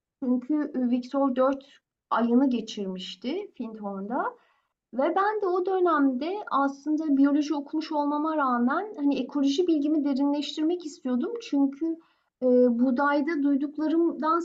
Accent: native